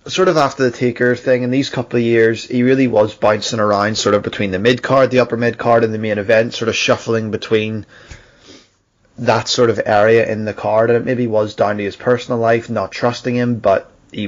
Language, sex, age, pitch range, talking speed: English, male, 20-39, 105-125 Hz, 230 wpm